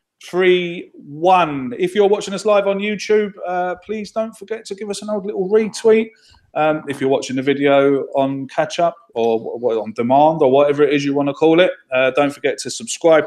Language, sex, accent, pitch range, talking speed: English, male, British, 135-200 Hz, 210 wpm